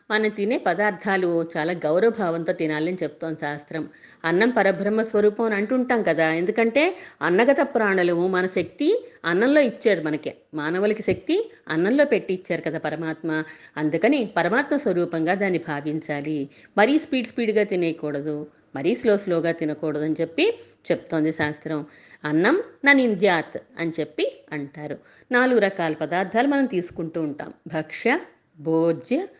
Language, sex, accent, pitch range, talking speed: Telugu, female, native, 160-230 Hz, 120 wpm